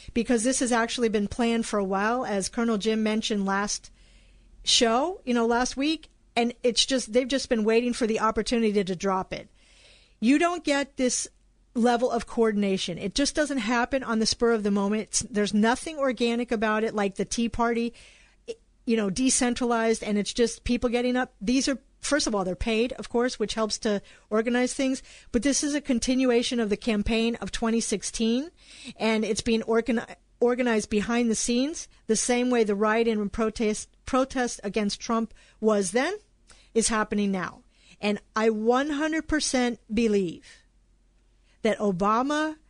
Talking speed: 170 wpm